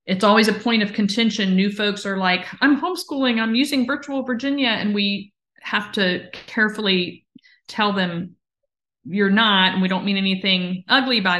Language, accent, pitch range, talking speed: English, American, 180-205 Hz, 170 wpm